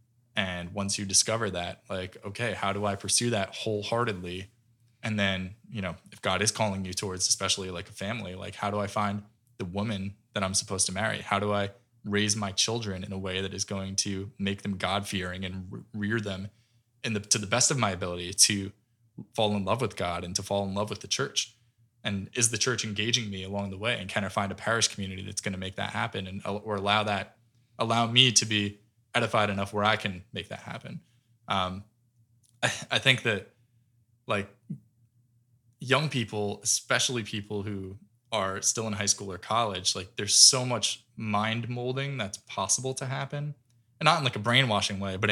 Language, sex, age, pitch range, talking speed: English, male, 20-39, 100-120 Hz, 205 wpm